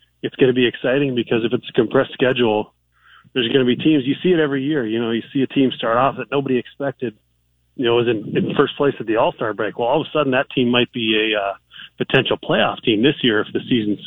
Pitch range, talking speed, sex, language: 105-130 Hz, 265 wpm, male, English